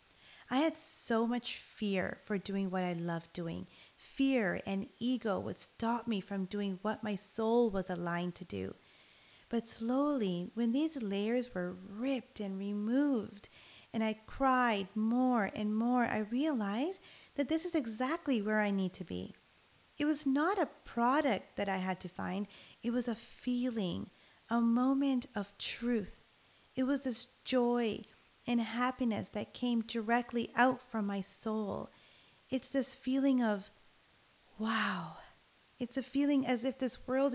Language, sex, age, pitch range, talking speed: English, female, 30-49, 200-255 Hz, 155 wpm